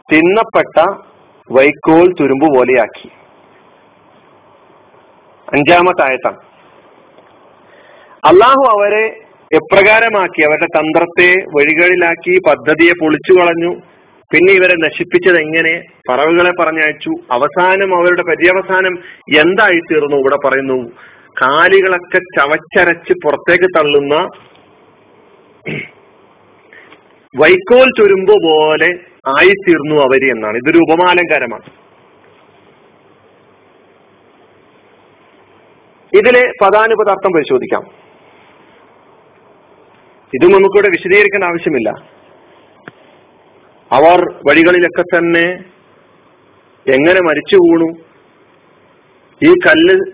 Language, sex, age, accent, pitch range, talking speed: Malayalam, male, 40-59, native, 160-205 Hz, 65 wpm